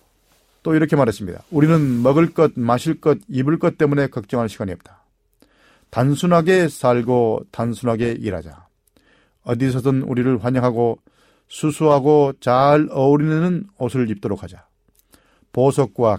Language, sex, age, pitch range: Korean, male, 40-59, 105-135 Hz